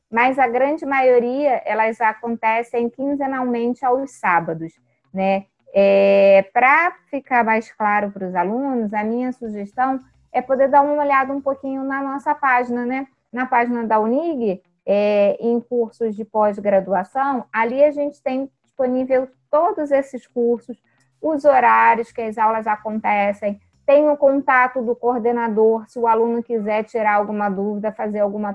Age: 20-39